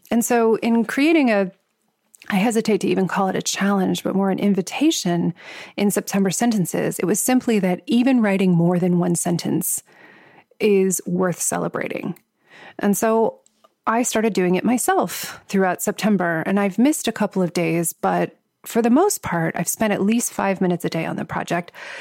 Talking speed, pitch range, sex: 175 wpm, 175-220 Hz, female